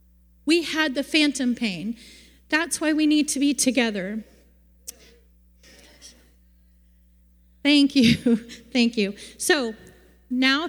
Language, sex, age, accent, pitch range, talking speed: English, female, 30-49, American, 205-255 Hz, 100 wpm